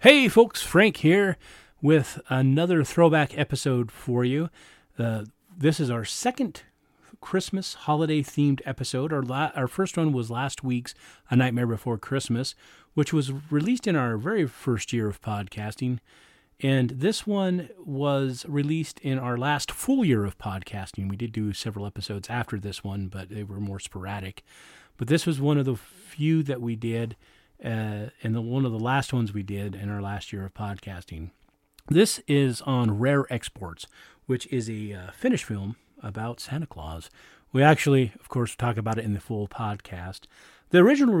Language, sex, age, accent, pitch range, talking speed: English, male, 40-59, American, 105-150 Hz, 170 wpm